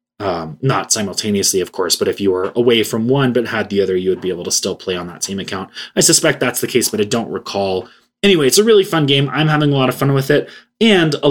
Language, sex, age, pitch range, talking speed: English, male, 20-39, 100-145 Hz, 275 wpm